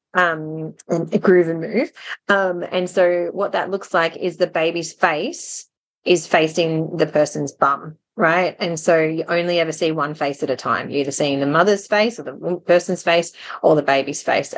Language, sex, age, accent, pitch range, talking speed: English, female, 20-39, Australian, 165-200 Hz, 200 wpm